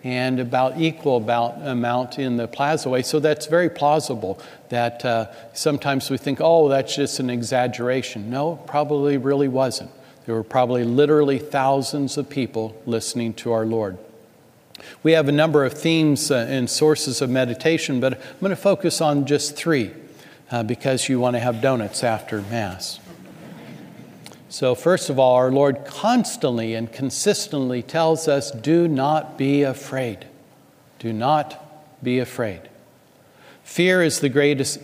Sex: male